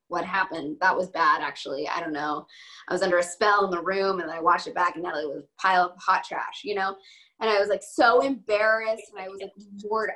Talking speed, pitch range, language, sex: 260 wpm, 190-235 Hz, English, female